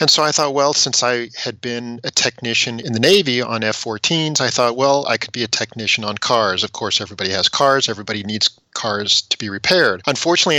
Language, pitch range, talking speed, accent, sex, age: English, 105-130 Hz, 215 wpm, American, male, 40-59